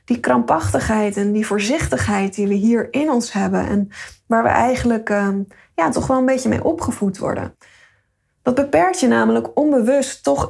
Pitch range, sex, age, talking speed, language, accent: 205-245 Hz, female, 10-29, 165 wpm, Dutch, Dutch